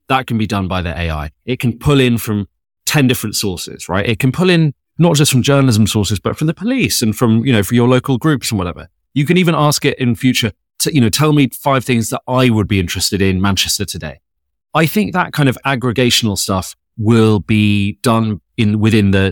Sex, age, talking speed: male, 30-49, 230 wpm